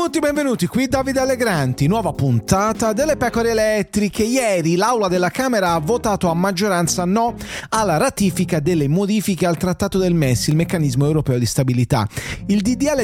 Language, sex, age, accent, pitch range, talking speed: English, male, 30-49, Italian, 155-210 Hz, 155 wpm